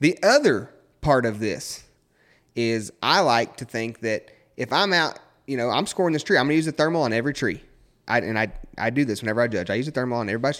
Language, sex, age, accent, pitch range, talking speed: English, male, 30-49, American, 110-150 Hz, 245 wpm